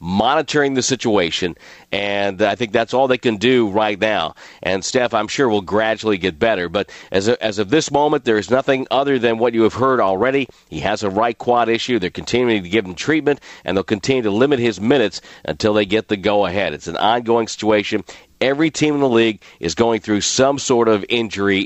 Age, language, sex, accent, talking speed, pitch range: 50-69, English, male, American, 215 wpm, 105-125 Hz